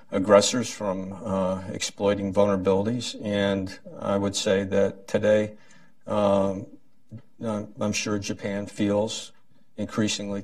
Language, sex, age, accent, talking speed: English, male, 50-69, American, 100 wpm